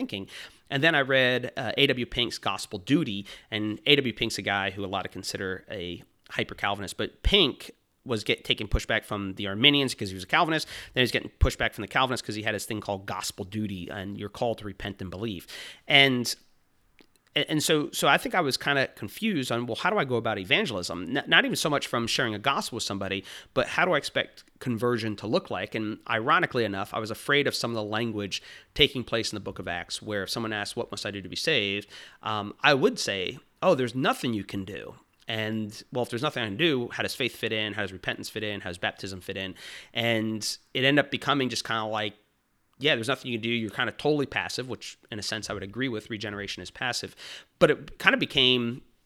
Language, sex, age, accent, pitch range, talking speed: English, male, 30-49, American, 100-130 Hz, 240 wpm